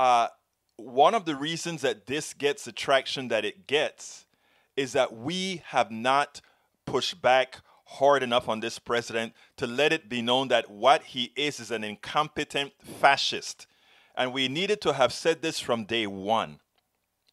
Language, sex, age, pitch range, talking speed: English, male, 30-49, 125-170 Hz, 165 wpm